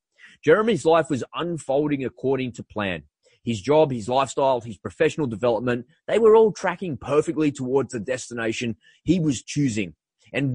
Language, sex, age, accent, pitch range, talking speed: English, male, 30-49, Australian, 110-160 Hz, 150 wpm